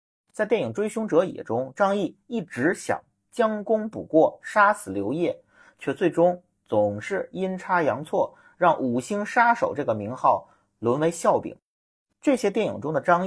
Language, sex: Chinese, male